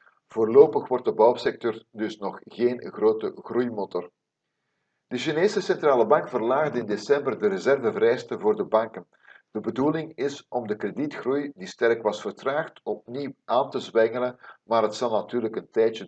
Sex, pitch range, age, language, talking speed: male, 115-160 Hz, 50-69, Dutch, 155 wpm